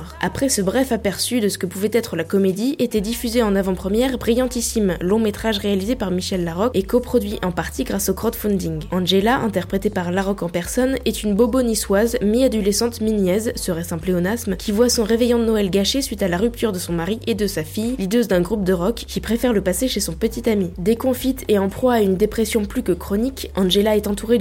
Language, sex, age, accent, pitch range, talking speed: French, female, 10-29, French, 190-230 Hz, 220 wpm